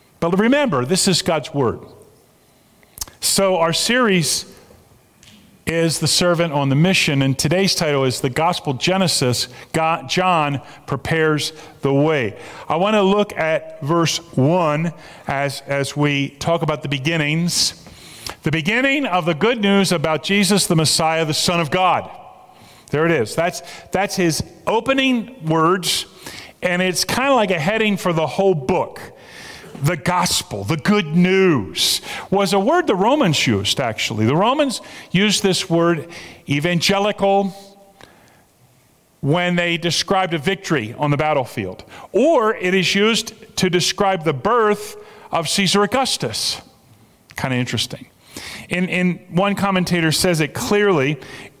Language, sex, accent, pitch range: English, male, American, 150-195 Hz